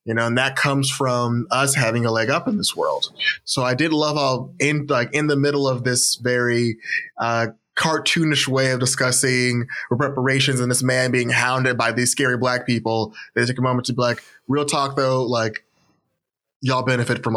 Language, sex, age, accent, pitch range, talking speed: English, male, 20-39, American, 115-130 Hz, 195 wpm